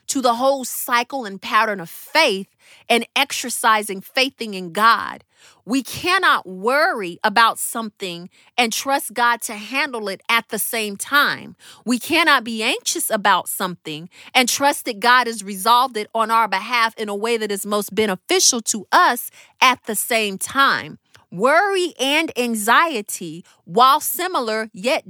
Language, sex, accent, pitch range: English, female, American, 215-280 Hz